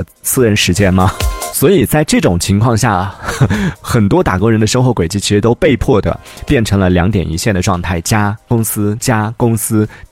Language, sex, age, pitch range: Chinese, male, 30-49, 100-135 Hz